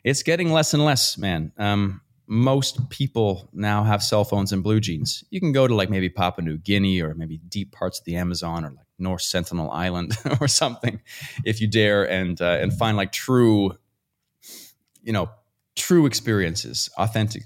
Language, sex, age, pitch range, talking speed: English, male, 30-49, 100-120 Hz, 180 wpm